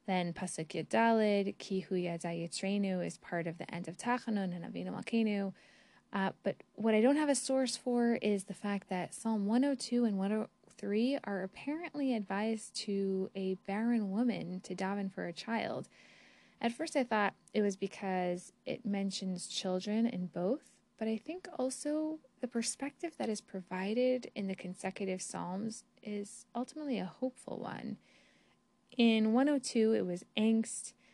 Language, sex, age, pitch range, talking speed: English, female, 10-29, 190-245 Hz, 150 wpm